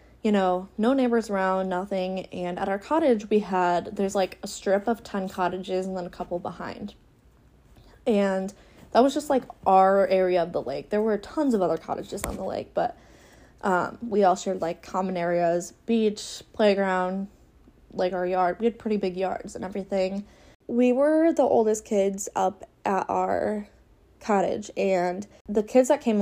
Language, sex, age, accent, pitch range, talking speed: English, female, 10-29, American, 185-220 Hz, 175 wpm